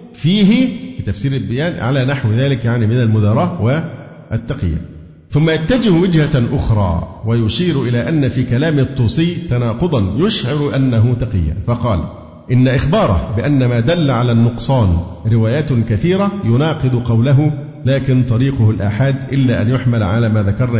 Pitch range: 110-145 Hz